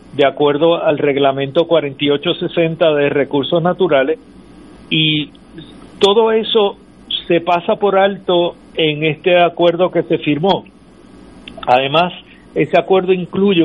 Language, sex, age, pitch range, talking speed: Spanish, male, 50-69, 150-190 Hz, 110 wpm